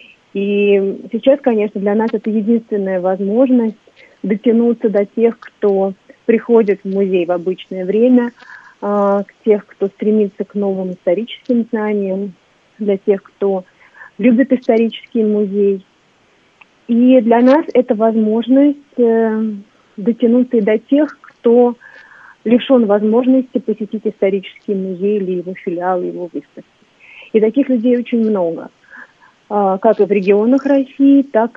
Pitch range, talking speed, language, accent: 190-235 Hz, 125 wpm, Russian, native